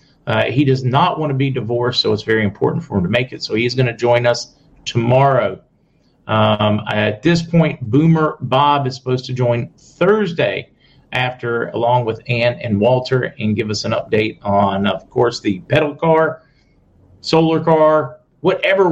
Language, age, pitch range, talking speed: English, 40-59, 110-140 Hz, 175 wpm